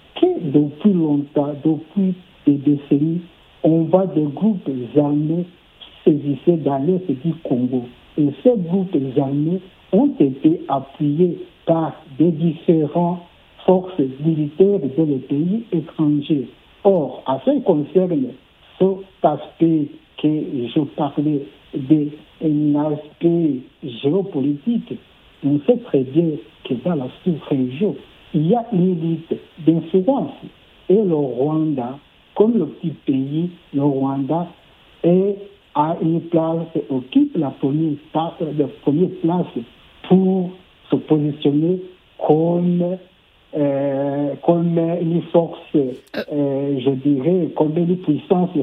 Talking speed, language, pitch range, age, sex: 110 wpm, French, 145-180 Hz, 60-79, male